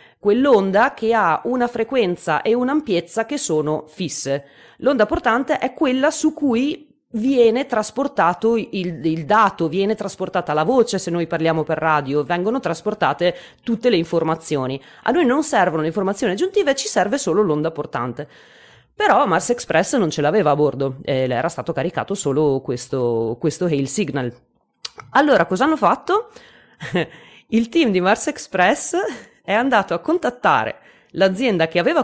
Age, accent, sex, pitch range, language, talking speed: 30-49, native, female, 155-240 Hz, Italian, 150 wpm